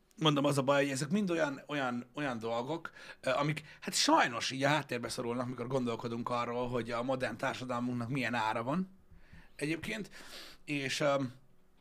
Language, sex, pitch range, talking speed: Hungarian, male, 120-150 Hz, 150 wpm